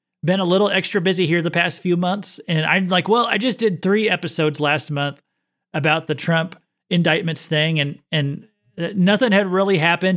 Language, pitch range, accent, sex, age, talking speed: English, 150-185 Hz, American, male, 30-49, 190 wpm